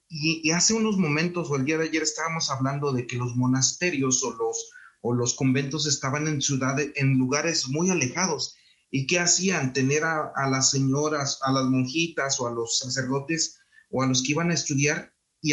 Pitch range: 125-150 Hz